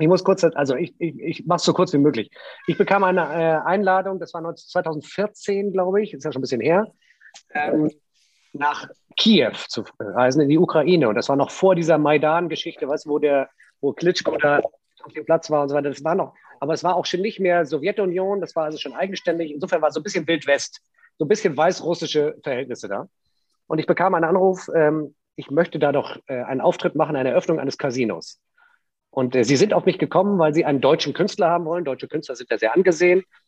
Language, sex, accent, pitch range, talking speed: German, male, German, 140-180 Hz, 225 wpm